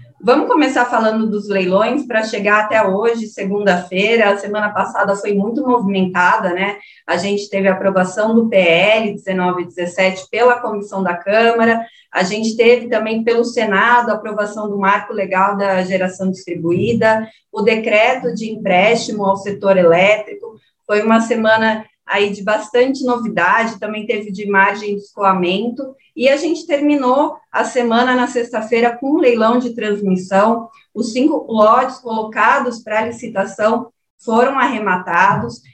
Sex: female